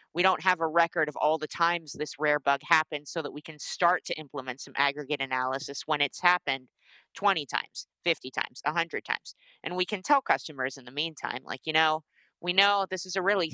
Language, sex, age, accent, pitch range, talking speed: English, female, 30-49, American, 145-185 Hz, 215 wpm